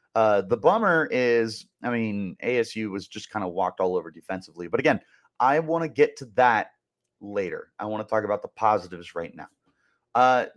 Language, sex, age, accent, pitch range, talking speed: English, male, 30-49, American, 110-140 Hz, 195 wpm